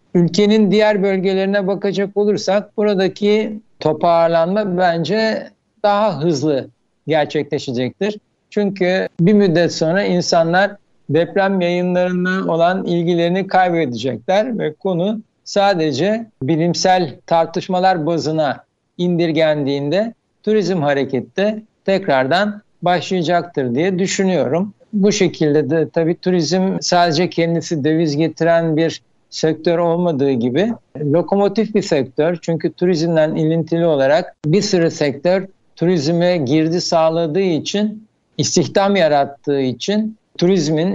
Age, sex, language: 60-79, male, Turkish